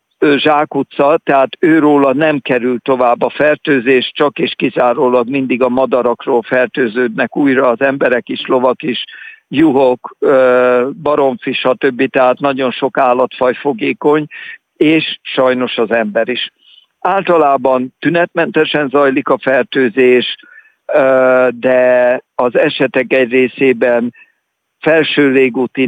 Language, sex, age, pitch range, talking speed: Hungarian, male, 60-79, 125-140 Hz, 110 wpm